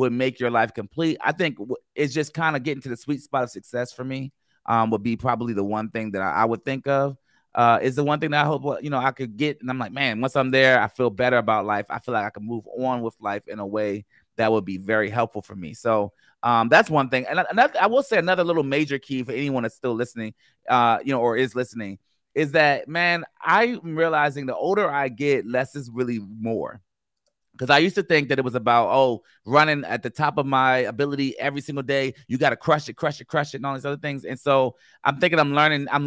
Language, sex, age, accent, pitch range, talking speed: English, male, 30-49, American, 120-145 Hz, 260 wpm